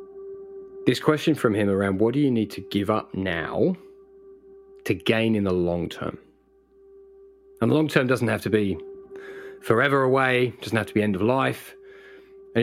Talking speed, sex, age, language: 175 wpm, male, 30-49, English